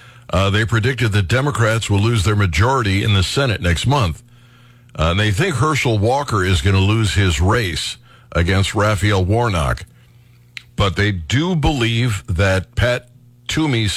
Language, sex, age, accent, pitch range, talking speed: English, male, 60-79, American, 95-120 Hz, 155 wpm